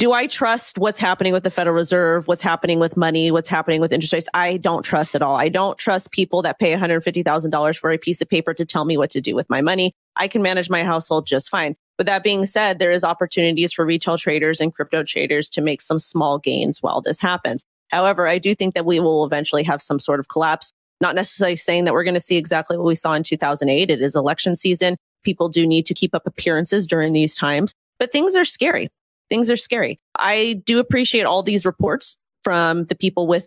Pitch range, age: 150-180 Hz, 30-49